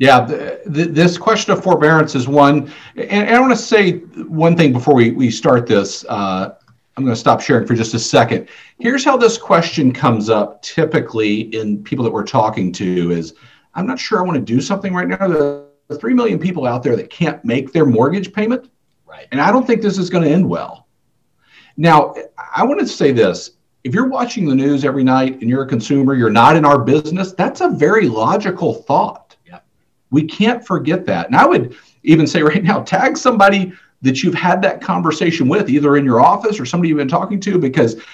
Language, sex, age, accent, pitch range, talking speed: English, male, 50-69, American, 115-190 Hz, 215 wpm